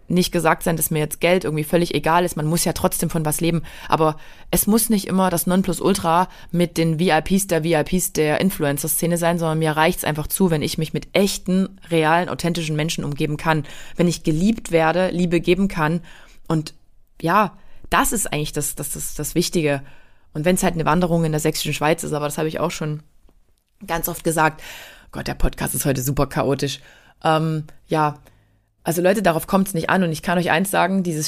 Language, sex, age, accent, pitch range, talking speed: German, female, 20-39, German, 155-185 Hz, 205 wpm